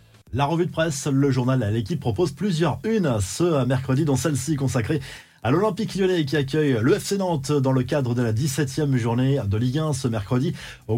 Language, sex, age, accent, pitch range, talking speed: French, male, 20-39, French, 120-155 Hz, 200 wpm